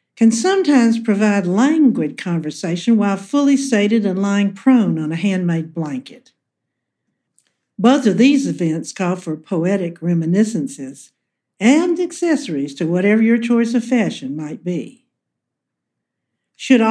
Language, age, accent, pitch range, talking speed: English, 60-79, American, 185-245 Hz, 120 wpm